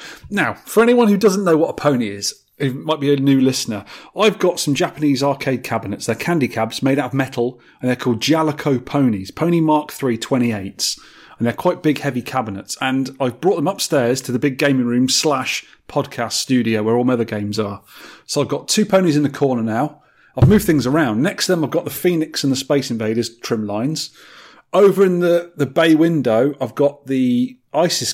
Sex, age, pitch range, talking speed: male, 30-49, 125-155 Hz, 210 wpm